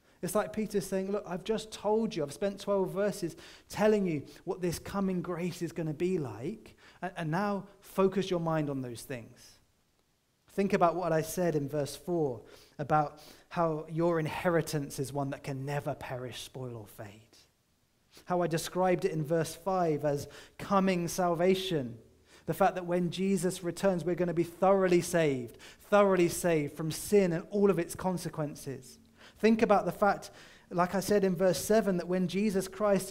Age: 30-49